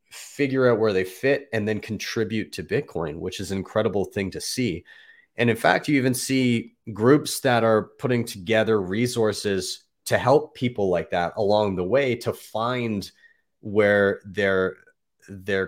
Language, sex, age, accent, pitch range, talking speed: English, male, 30-49, American, 95-115 Hz, 160 wpm